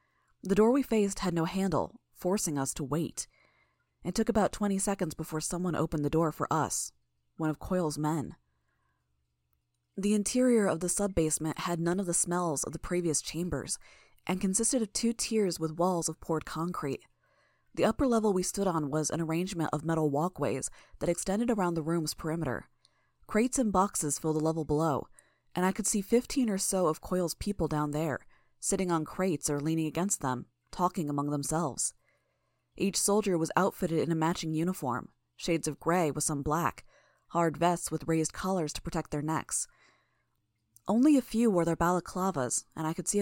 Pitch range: 155-185 Hz